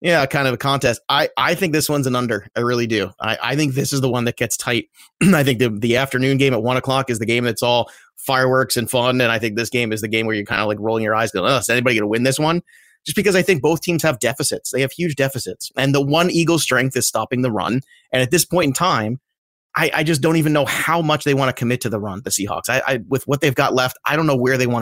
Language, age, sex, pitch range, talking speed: English, 30-49, male, 115-135 Hz, 300 wpm